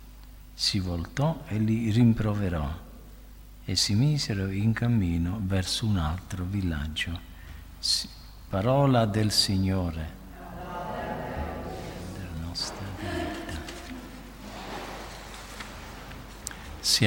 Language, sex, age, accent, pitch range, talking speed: Italian, male, 50-69, native, 90-120 Hz, 75 wpm